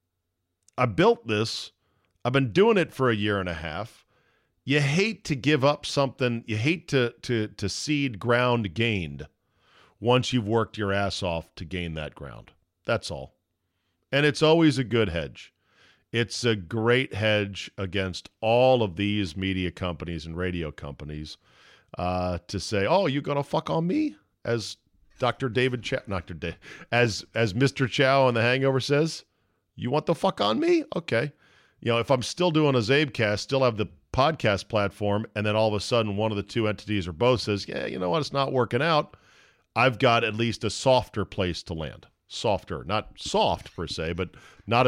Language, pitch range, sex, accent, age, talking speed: English, 100-135 Hz, male, American, 40-59, 185 wpm